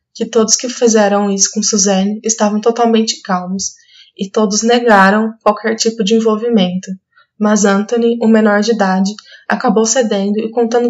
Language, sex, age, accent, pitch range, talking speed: Portuguese, female, 20-39, Brazilian, 205-230 Hz, 150 wpm